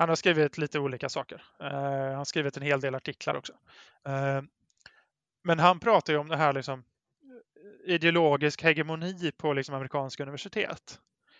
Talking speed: 145 wpm